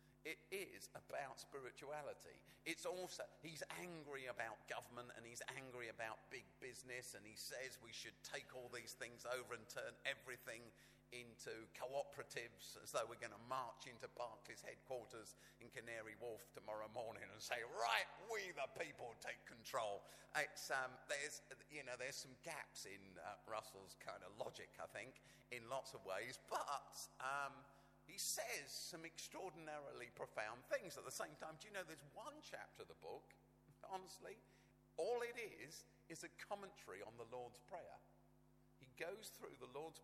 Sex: male